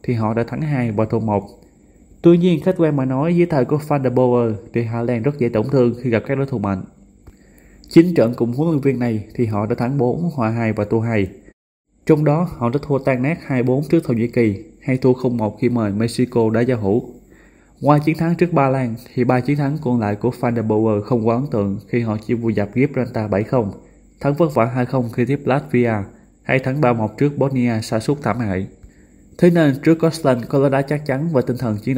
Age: 20-39